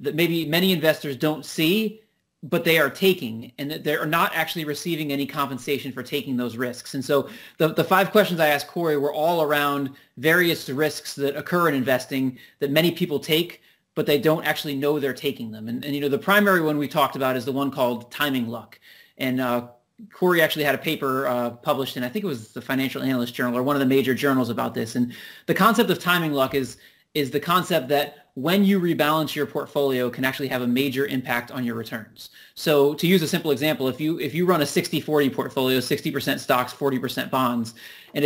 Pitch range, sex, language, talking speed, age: 130-160 Hz, male, English, 220 wpm, 30-49